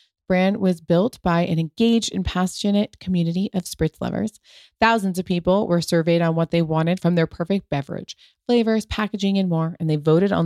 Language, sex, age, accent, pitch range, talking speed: English, female, 30-49, American, 160-200 Hz, 190 wpm